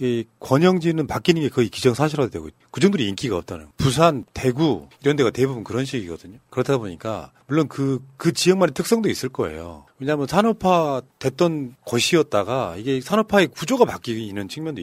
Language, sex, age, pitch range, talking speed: English, male, 40-59, 110-160 Hz, 145 wpm